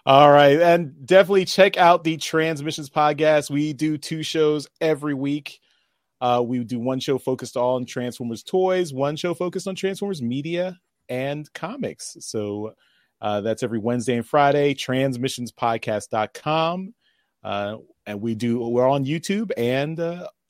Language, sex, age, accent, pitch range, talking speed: English, male, 30-49, American, 115-155 Hz, 145 wpm